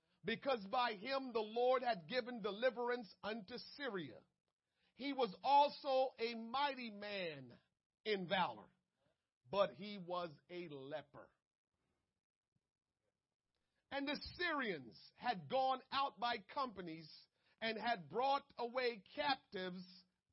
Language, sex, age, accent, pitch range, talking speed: English, male, 40-59, American, 185-235 Hz, 105 wpm